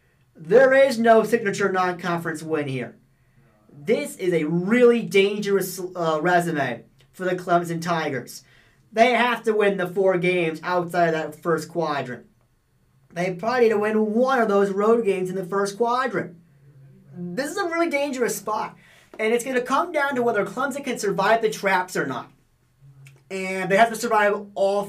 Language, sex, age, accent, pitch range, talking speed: English, male, 40-59, American, 165-225 Hz, 170 wpm